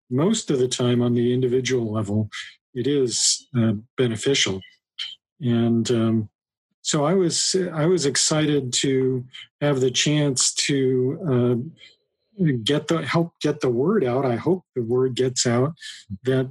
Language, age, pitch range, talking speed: English, 50-69, 120-145 Hz, 145 wpm